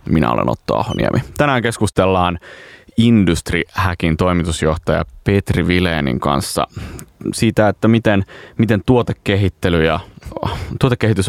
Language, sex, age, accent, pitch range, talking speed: Finnish, male, 30-49, native, 85-105 Hz, 95 wpm